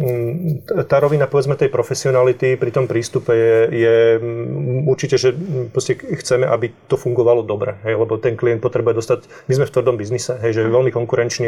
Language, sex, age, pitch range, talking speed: Slovak, male, 30-49, 120-130 Hz, 175 wpm